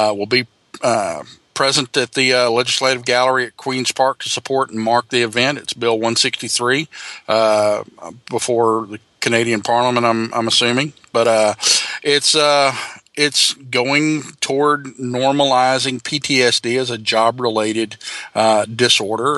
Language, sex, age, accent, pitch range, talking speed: English, male, 50-69, American, 110-130 Hz, 140 wpm